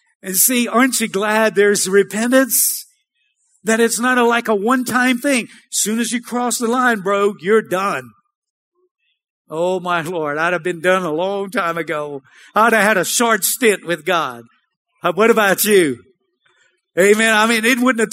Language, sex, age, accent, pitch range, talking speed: English, male, 50-69, American, 185-255 Hz, 170 wpm